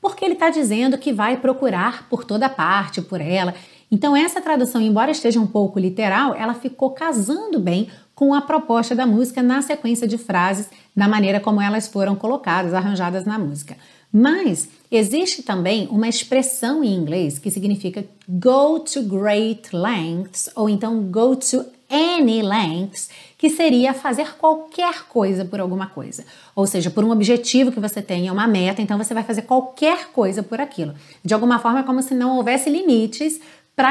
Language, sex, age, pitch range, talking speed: Portuguese, female, 30-49, 195-260 Hz, 175 wpm